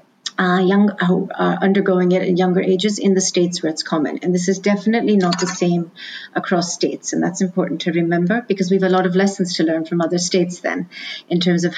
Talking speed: 230 wpm